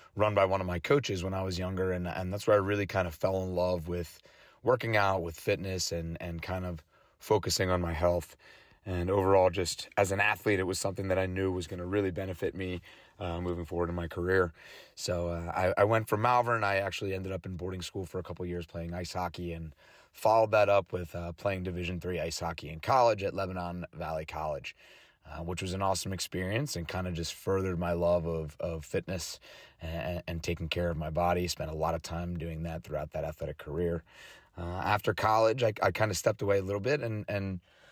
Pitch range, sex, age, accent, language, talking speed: 85-105 Hz, male, 30-49, American, English, 230 wpm